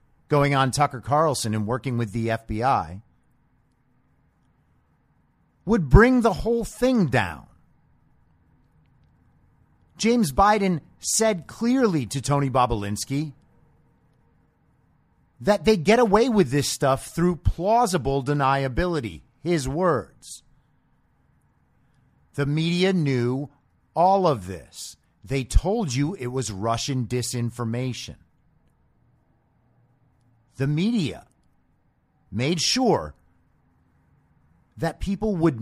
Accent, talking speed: American, 90 wpm